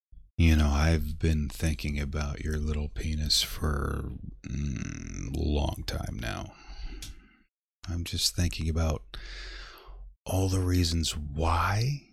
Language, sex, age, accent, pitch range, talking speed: English, male, 30-49, American, 75-95 Hz, 110 wpm